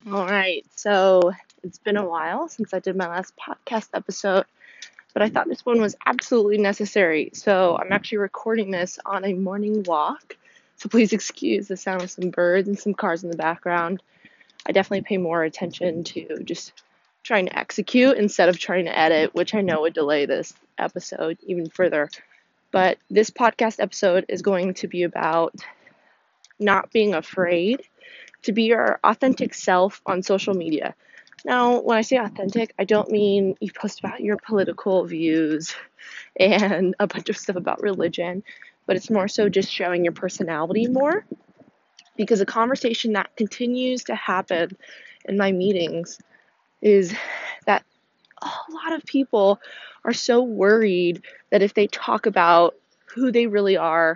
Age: 20-39